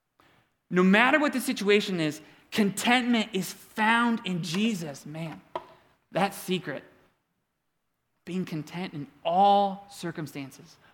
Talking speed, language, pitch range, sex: 105 wpm, English, 170-235 Hz, male